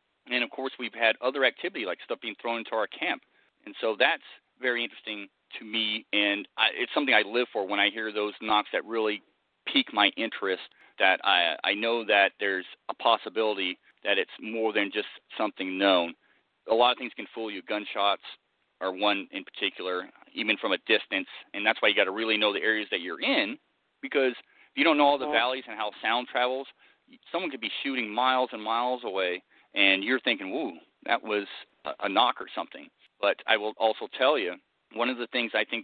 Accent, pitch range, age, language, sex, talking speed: American, 105-125 Hz, 40-59, English, male, 210 wpm